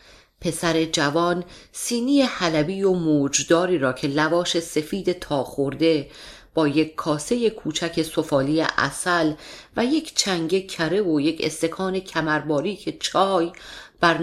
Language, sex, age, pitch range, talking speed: Persian, female, 40-59, 155-215 Hz, 120 wpm